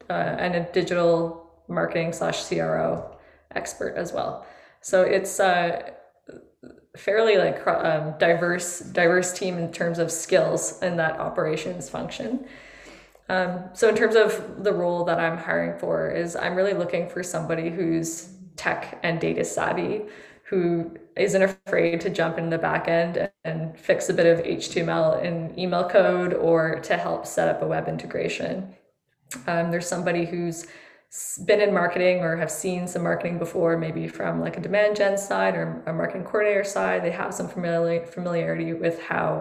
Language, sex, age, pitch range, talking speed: English, female, 20-39, 165-185 Hz, 165 wpm